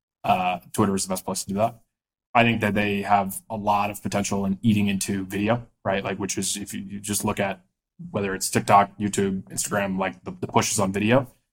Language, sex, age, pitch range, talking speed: English, male, 20-39, 100-115 Hz, 230 wpm